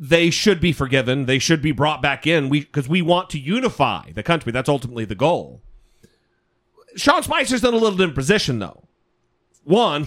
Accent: American